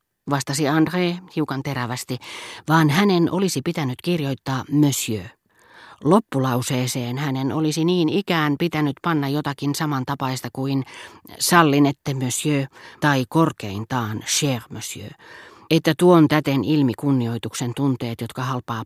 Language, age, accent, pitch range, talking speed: Finnish, 40-59, native, 125-160 Hz, 105 wpm